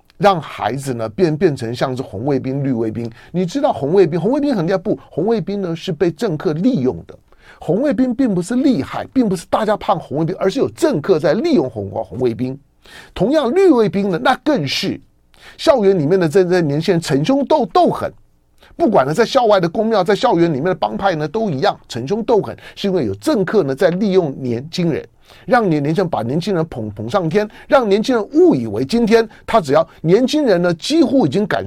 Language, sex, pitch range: Chinese, male, 150-225 Hz